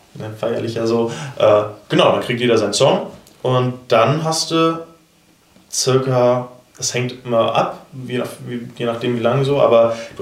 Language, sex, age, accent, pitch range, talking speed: German, male, 20-39, German, 110-125 Hz, 170 wpm